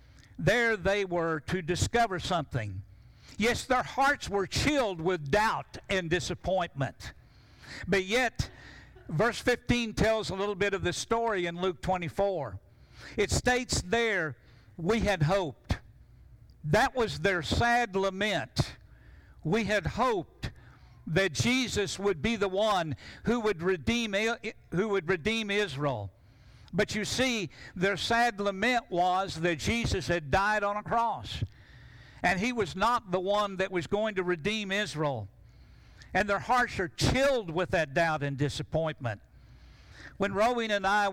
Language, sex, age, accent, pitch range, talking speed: English, male, 60-79, American, 155-210 Hz, 140 wpm